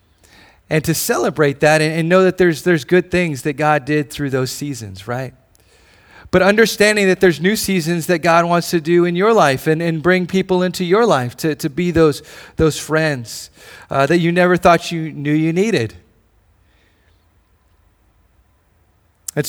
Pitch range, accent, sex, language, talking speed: 110-165 Hz, American, male, English, 170 wpm